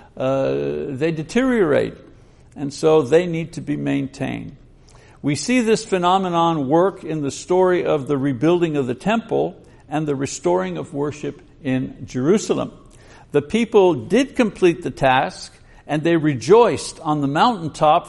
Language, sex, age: English, male, 60-79